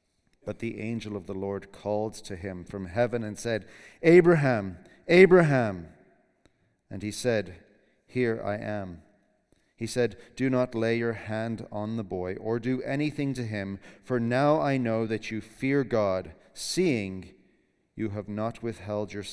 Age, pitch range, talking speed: 40-59, 105-140 Hz, 155 wpm